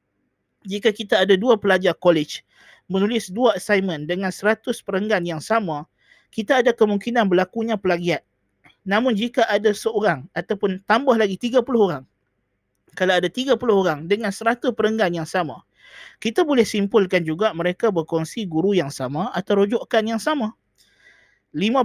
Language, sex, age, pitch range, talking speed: Malay, male, 20-39, 170-220 Hz, 145 wpm